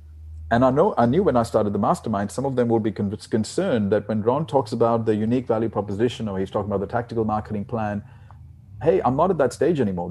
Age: 40-59